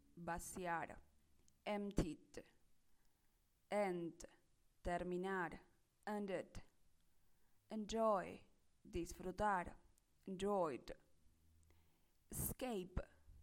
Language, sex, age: English, female, 20-39